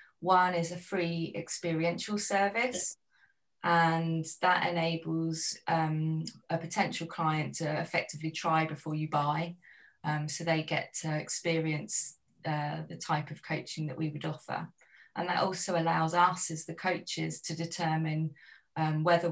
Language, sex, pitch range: English, female, 155-170 Hz